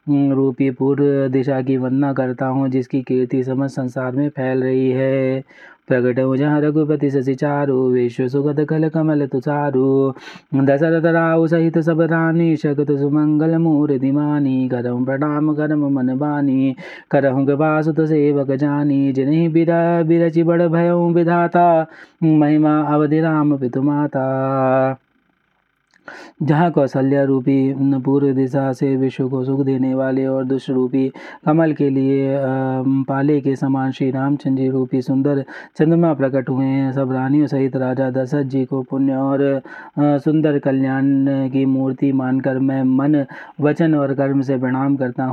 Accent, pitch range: native, 135-150 Hz